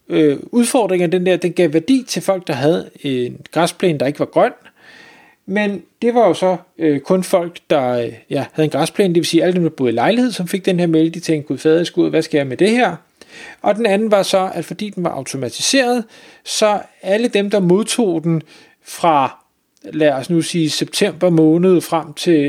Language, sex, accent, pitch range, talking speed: Danish, male, native, 155-195 Hz, 205 wpm